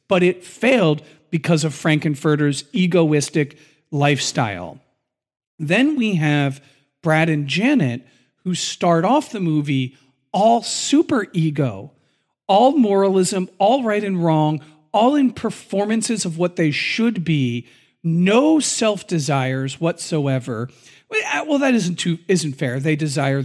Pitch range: 145-215 Hz